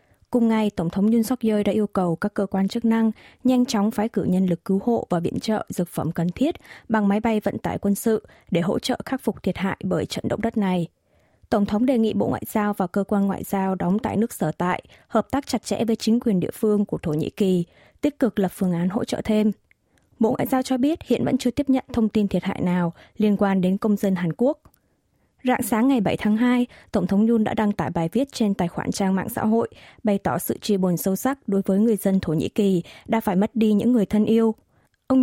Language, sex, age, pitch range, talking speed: Vietnamese, female, 20-39, 190-230 Hz, 260 wpm